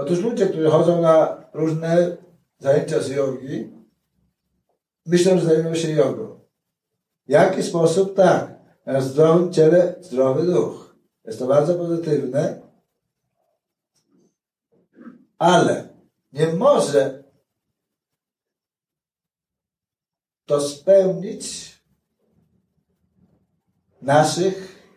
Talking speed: 80 wpm